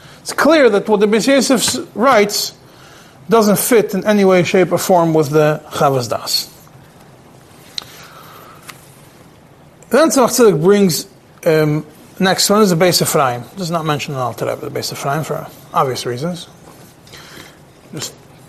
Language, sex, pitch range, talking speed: English, male, 160-230 Hz, 135 wpm